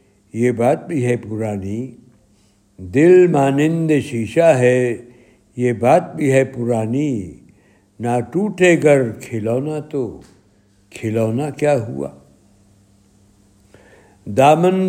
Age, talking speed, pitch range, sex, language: 60-79, 95 wpm, 105-145 Hz, male, Urdu